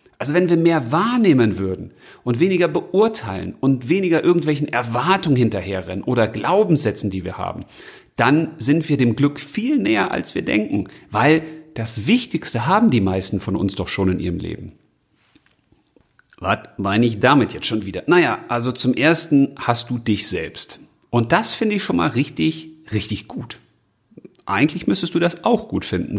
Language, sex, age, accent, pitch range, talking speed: German, male, 40-59, German, 100-160 Hz, 165 wpm